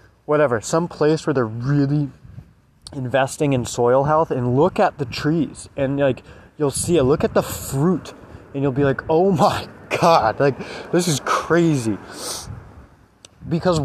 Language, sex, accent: English, male, American